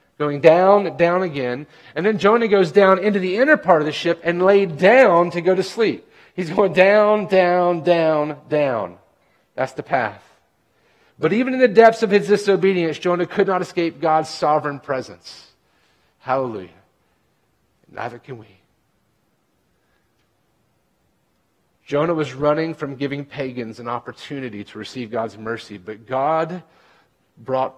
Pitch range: 145-185 Hz